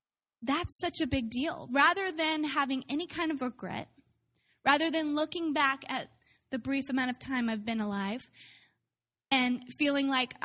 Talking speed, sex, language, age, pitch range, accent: 160 wpm, female, English, 10-29, 225-280 Hz, American